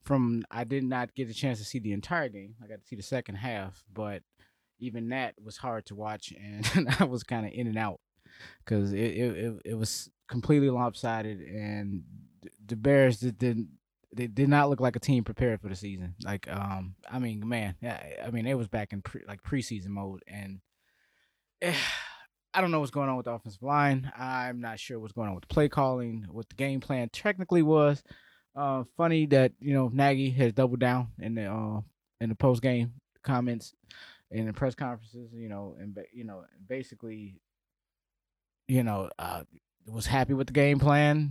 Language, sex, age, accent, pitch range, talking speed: English, male, 20-39, American, 105-130 Hz, 200 wpm